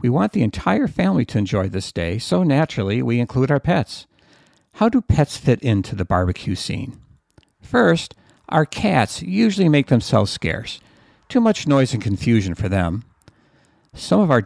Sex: male